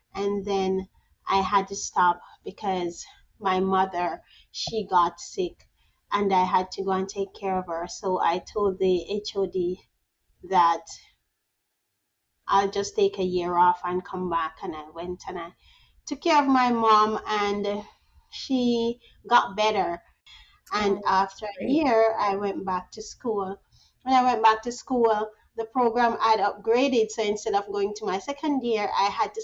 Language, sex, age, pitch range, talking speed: English, female, 30-49, 200-245 Hz, 165 wpm